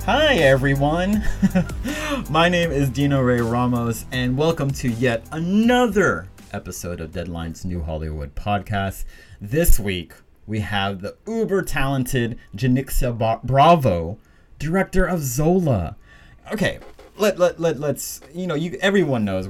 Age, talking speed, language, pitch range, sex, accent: 30-49, 125 wpm, English, 100-155 Hz, male, American